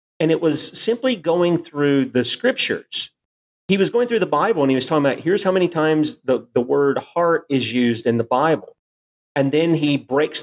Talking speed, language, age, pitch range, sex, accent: 205 wpm, English, 40-59, 110-145 Hz, male, American